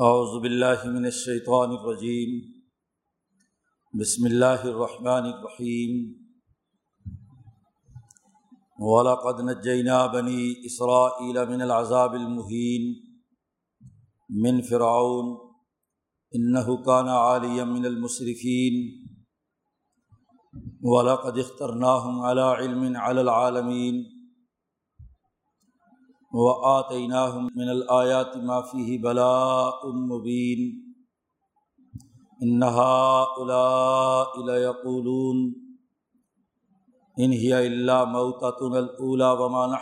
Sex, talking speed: male, 45 wpm